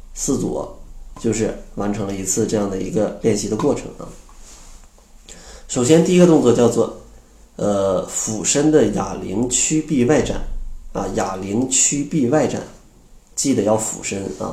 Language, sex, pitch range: Chinese, male, 105-130 Hz